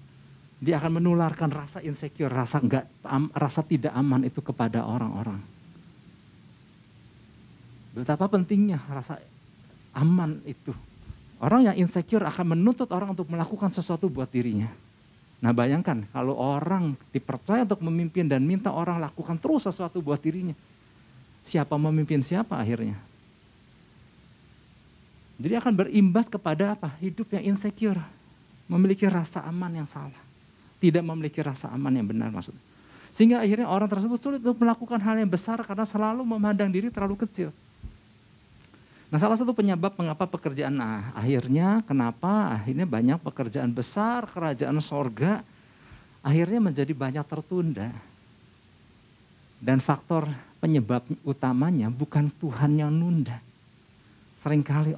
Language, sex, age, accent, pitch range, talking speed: Indonesian, male, 50-69, native, 135-185 Hz, 125 wpm